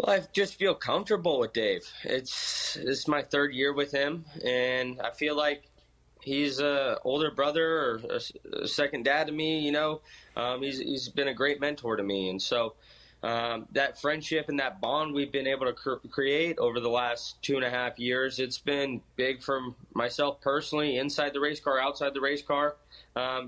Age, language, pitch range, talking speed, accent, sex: 20-39, English, 130-150 Hz, 195 wpm, American, male